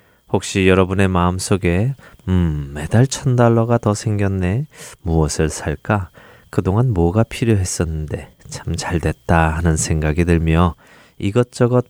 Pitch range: 85-115 Hz